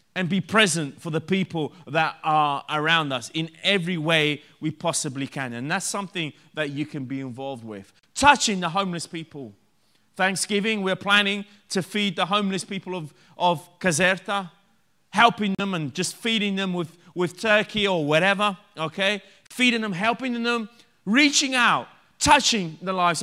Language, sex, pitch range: Italian, male, 150-205 Hz